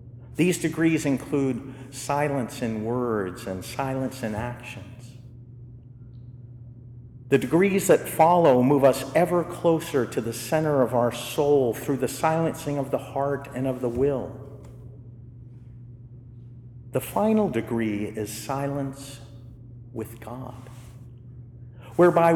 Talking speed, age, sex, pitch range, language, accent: 115 wpm, 50-69, male, 120-135 Hz, English, American